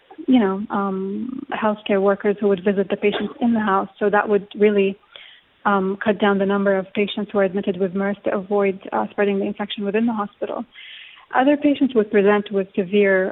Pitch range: 200-220 Hz